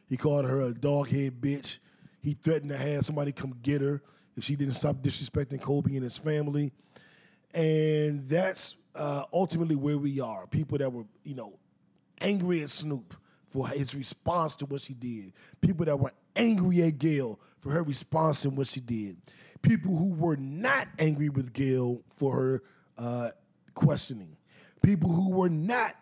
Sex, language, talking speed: male, English, 170 wpm